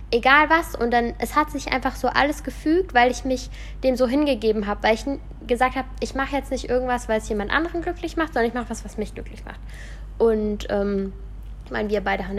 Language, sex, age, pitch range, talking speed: German, female, 10-29, 215-255 Hz, 235 wpm